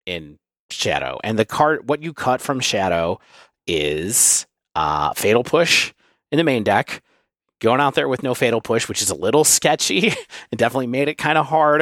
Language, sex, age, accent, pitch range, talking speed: English, male, 30-49, American, 85-130 Hz, 190 wpm